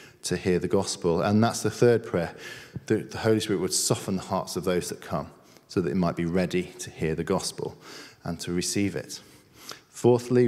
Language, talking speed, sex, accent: English, 205 wpm, male, British